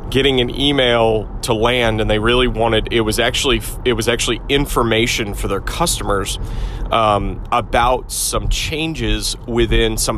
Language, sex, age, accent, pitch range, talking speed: English, male, 30-49, American, 110-140 Hz, 145 wpm